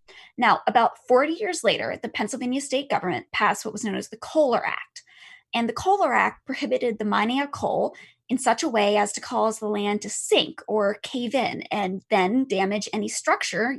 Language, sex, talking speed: English, female, 195 wpm